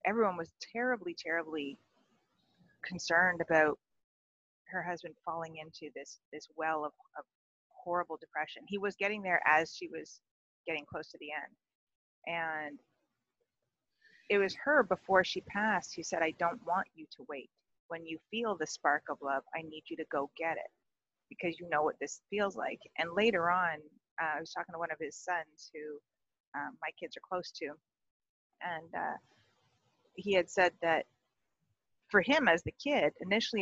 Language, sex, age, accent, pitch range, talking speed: English, female, 30-49, American, 155-185 Hz, 175 wpm